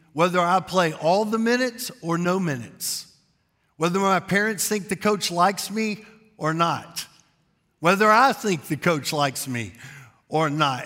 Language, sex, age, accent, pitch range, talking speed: English, male, 50-69, American, 140-195 Hz, 155 wpm